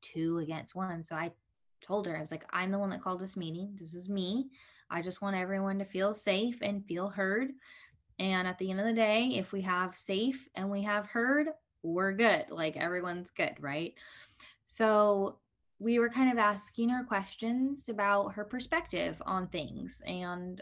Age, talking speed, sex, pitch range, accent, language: 10-29, 190 wpm, female, 170-220 Hz, American, English